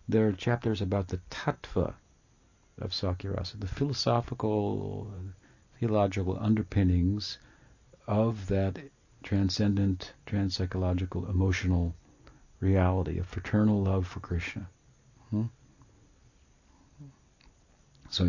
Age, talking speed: 60-79, 80 wpm